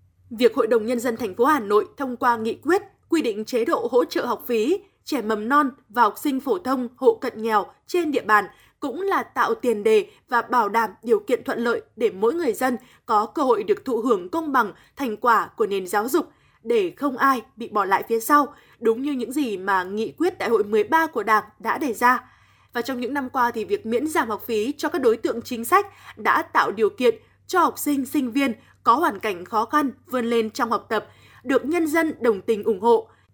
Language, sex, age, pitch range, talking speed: Vietnamese, female, 20-39, 230-325 Hz, 235 wpm